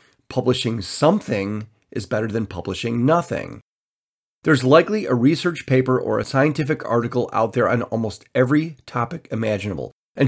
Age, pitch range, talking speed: 40-59, 115-145 Hz, 140 wpm